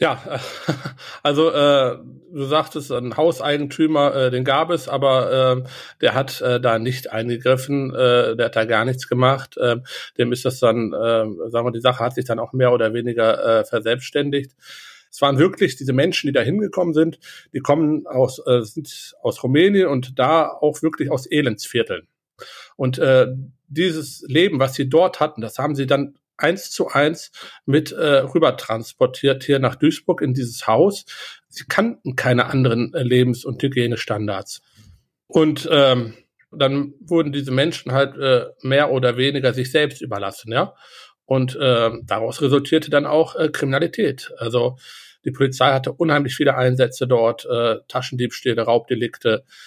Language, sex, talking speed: German, male, 160 wpm